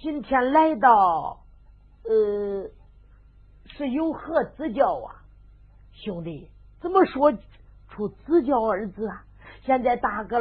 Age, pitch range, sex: 50-69, 190-310 Hz, female